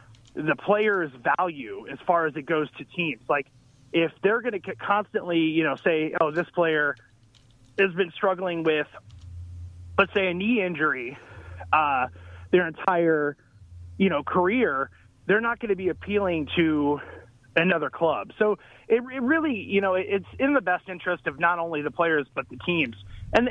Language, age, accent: English, 30-49, American